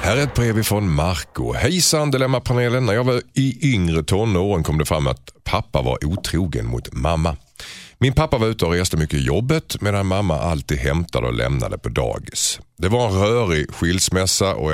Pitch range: 70-110 Hz